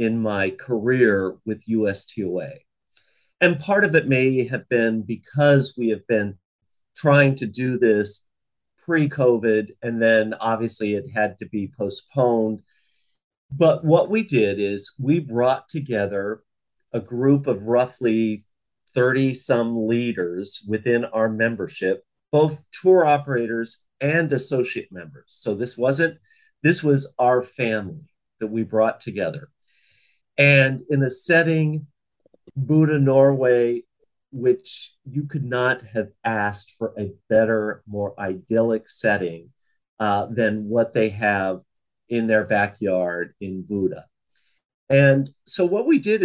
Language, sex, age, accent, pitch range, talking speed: English, male, 40-59, American, 110-145 Hz, 125 wpm